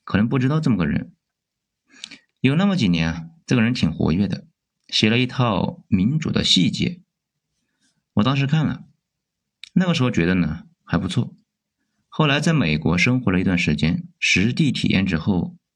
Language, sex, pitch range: Chinese, male, 100-170 Hz